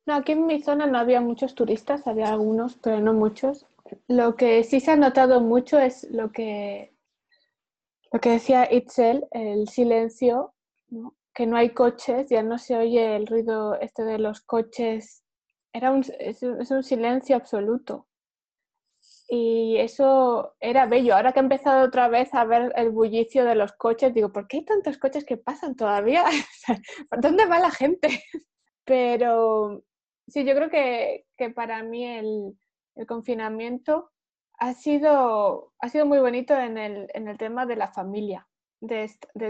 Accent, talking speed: Spanish, 165 wpm